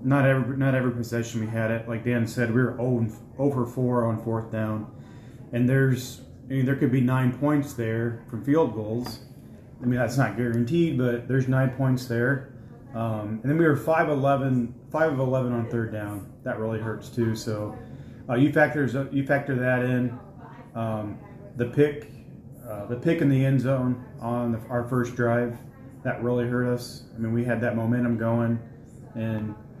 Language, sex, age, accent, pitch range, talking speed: English, male, 30-49, American, 120-135 Hz, 185 wpm